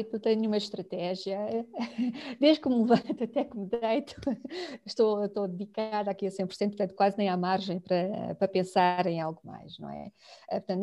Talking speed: 175 wpm